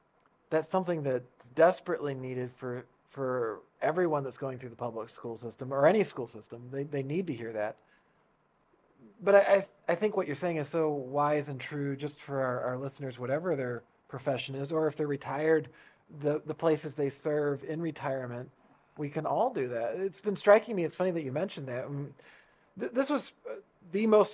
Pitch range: 135-170 Hz